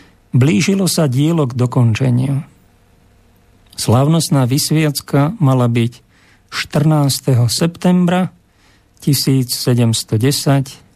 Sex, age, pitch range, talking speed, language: male, 50-69, 115-155 Hz, 65 wpm, Slovak